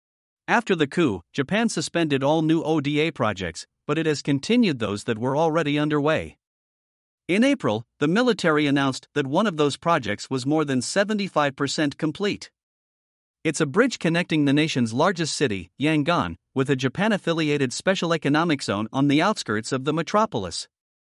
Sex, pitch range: male, 130-170 Hz